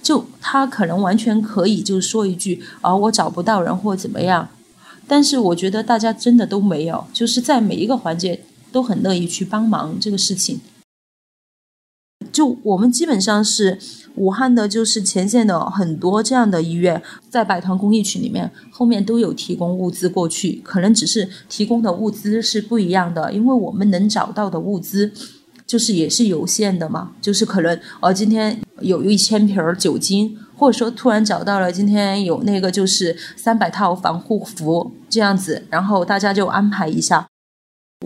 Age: 30-49